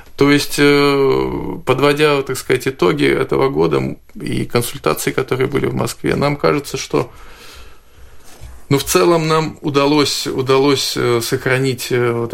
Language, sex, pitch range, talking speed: Russian, male, 115-140 Hz, 120 wpm